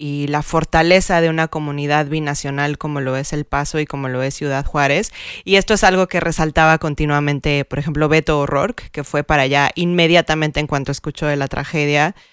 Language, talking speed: Spanish, 195 wpm